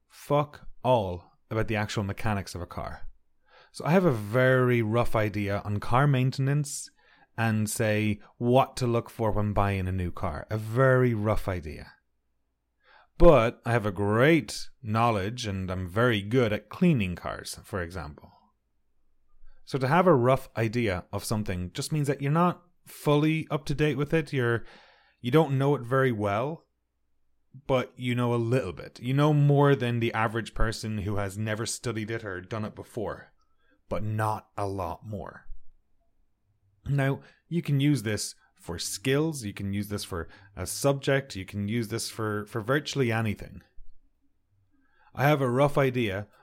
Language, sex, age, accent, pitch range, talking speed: English, male, 30-49, Irish, 100-130 Hz, 165 wpm